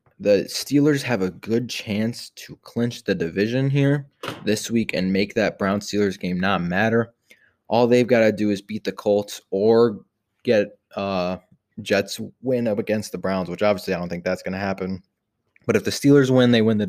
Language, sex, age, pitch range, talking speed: English, male, 20-39, 95-110 Hz, 195 wpm